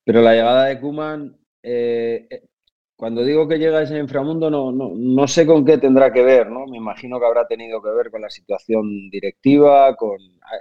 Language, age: Spanish, 30-49